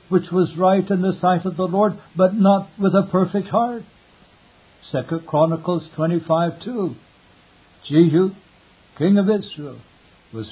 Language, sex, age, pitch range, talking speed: English, male, 60-79, 155-190 Hz, 135 wpm